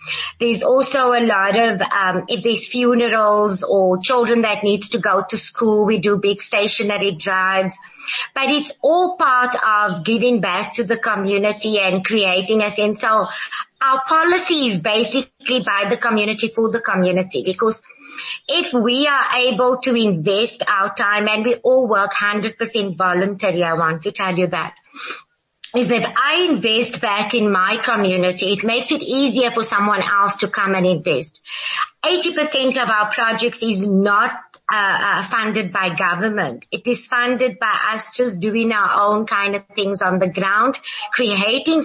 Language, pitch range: English, 200-245 Hz